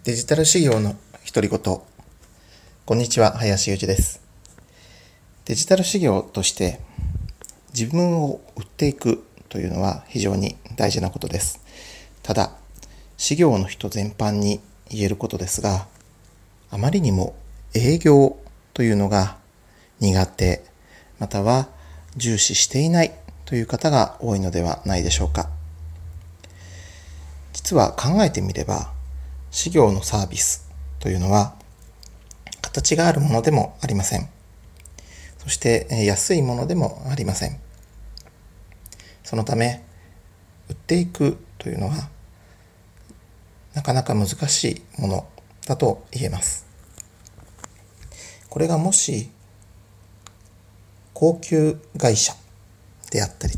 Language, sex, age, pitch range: Japanese, male, 40-59, 90-120 Hz